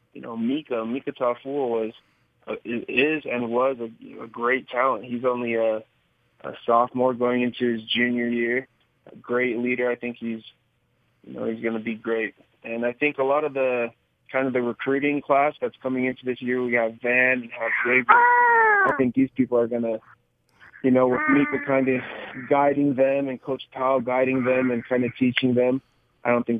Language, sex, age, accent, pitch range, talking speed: English, male, 20-39, American, 120-140 Hz, 195 wpm